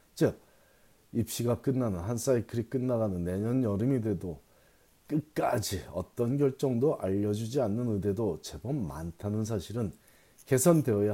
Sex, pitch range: male, 95-125 Hz